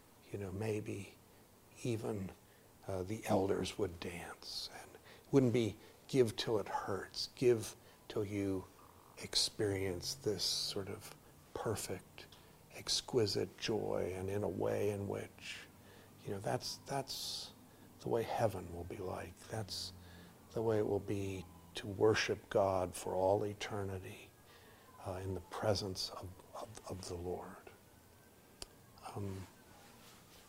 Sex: male